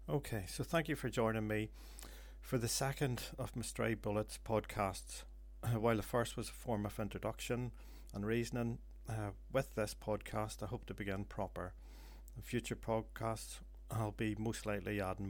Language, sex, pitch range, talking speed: English, male, 95-115 Hz, 160 wpm